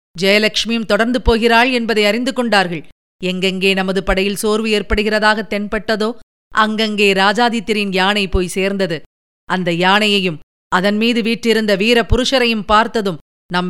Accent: native